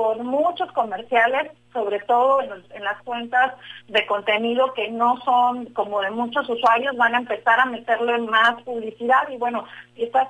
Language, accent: Spanish, Mexican